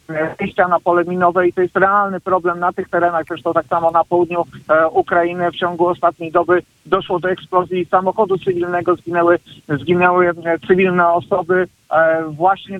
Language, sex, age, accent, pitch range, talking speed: Polish, male, 50-69, native, 175-195 Hz, 145 wpm